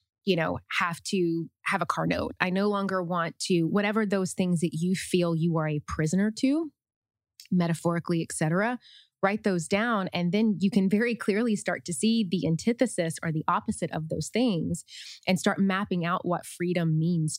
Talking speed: 185 wpm